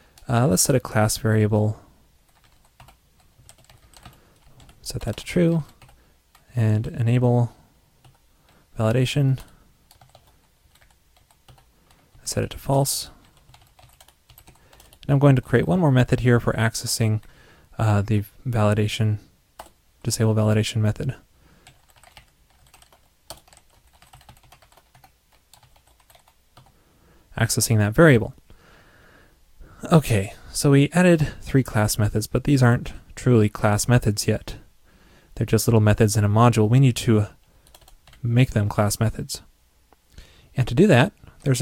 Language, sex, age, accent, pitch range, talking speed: English, male, 30-49, American, 105-125 Hz, 100 wpm